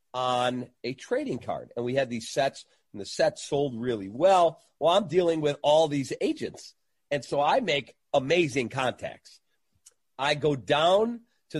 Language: English